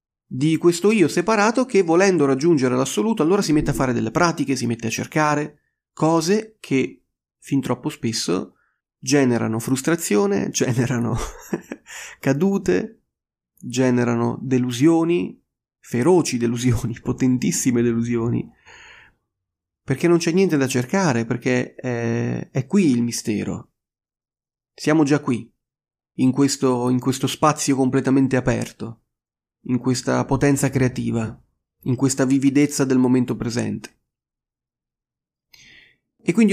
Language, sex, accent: Italian, male, native